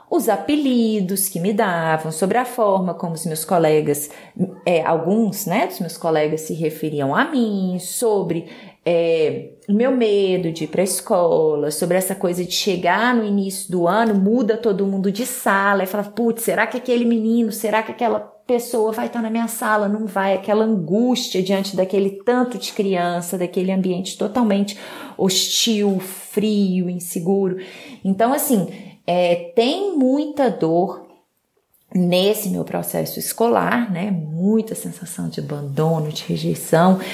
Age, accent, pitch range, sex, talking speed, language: 30-49, Brazilian, 185-240 Hz, female, 150 wpm, Portuguese